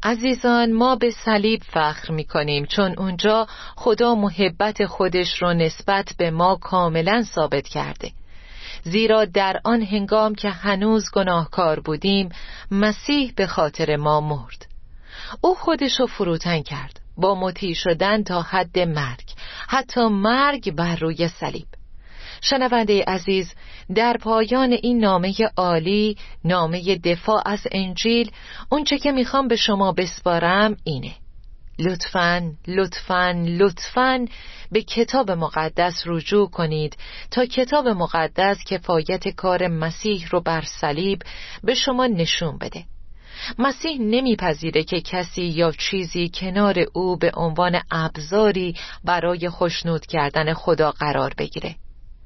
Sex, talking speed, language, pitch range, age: female, 115 wpm, Persian, 165-215 Hz, 40-59